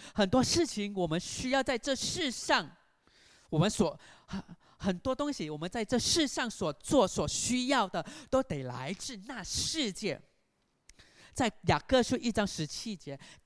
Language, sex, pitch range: Chinese, male, 175-250 Hz